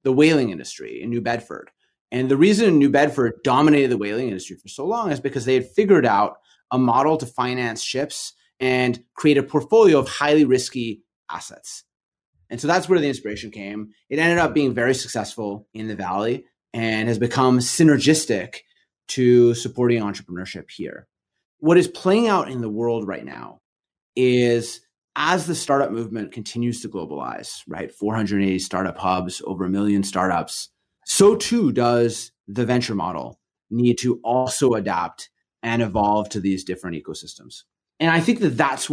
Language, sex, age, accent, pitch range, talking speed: English, male, 30-49, American, 105-140 Hz, 165 wpm